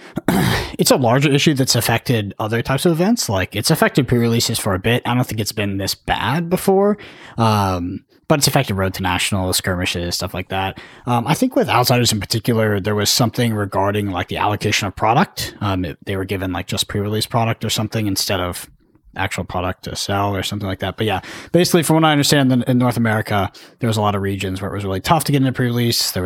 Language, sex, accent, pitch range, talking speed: English, male, American, 100-125 Hz, 230 wpm